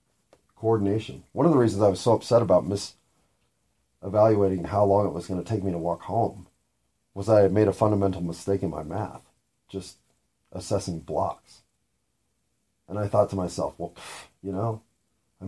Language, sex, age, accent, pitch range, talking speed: English, male, 40-59, American, 80-105 Hz, 180 wpm